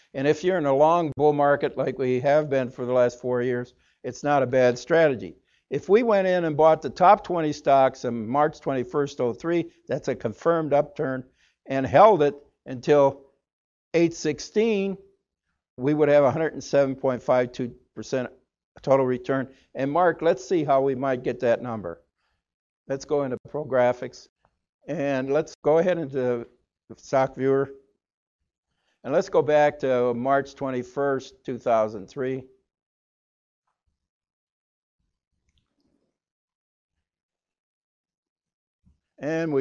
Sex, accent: male, American